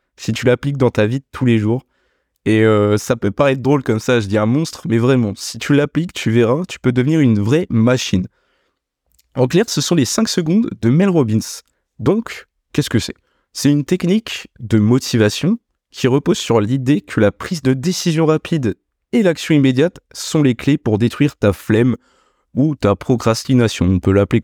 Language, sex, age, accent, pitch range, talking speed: French, male, 20-39, French, 110-150 Hz, 195 wpm